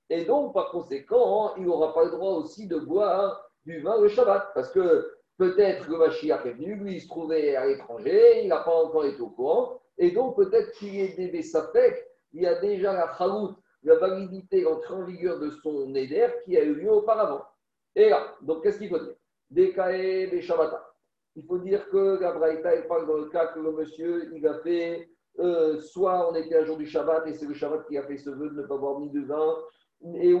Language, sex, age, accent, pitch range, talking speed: French, male, 50-69, French, 155-245 Hz, 225 wpm